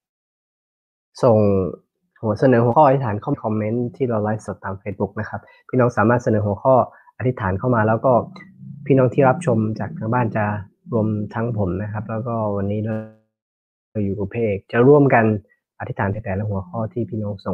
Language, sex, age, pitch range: Thai, male, 20-39, 100-120 Hz